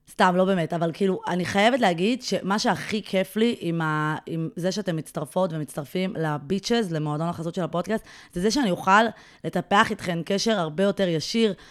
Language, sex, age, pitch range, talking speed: Hebrew, female, 20-39, 165-210 Hz, 175 wpm